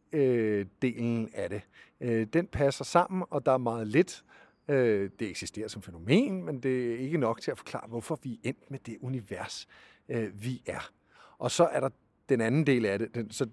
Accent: native